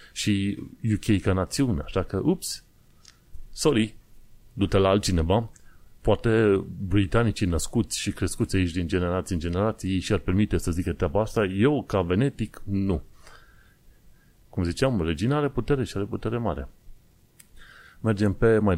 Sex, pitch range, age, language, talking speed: male, 95-115 Hz, 30-49, Romanian, 135 wpm